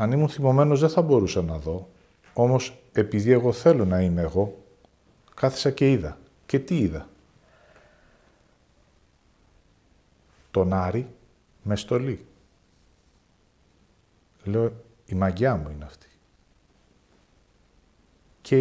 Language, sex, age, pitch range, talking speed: Greek, male, 50-69, 90-140 Hz, 105 wpm